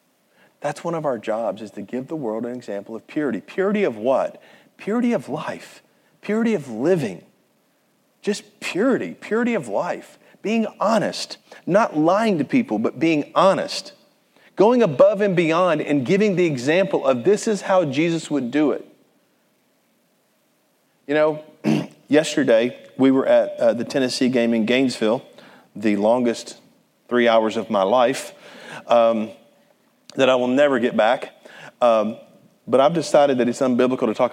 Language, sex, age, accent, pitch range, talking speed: English, male, 40-59, American, 115-165 Hz, 155 wpm